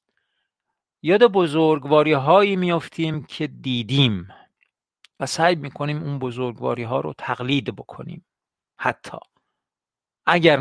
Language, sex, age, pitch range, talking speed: Persian, male, 50-69, 125-160 Hz, 95 wpm